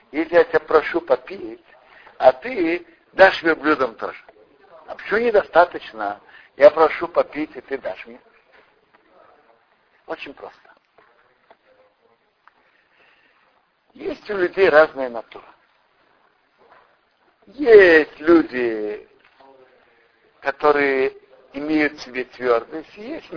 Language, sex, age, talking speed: Russian, male, 60-79, 90 wpm